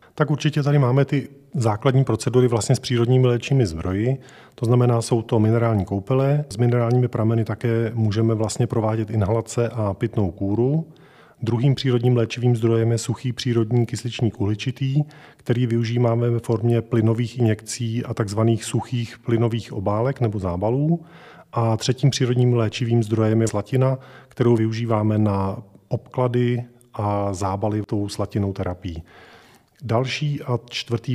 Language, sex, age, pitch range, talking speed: Czech, male, 40-59, 110-125 Hz, 135 wpm